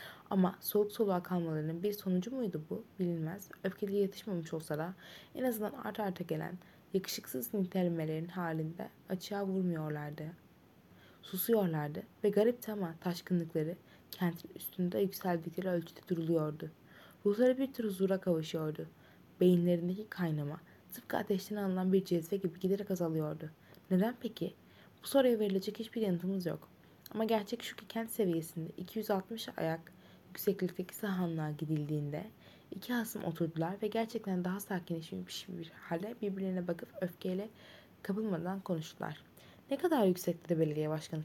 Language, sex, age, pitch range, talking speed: Turkish, female, 20-39, 165-205 Hz, 125 wpm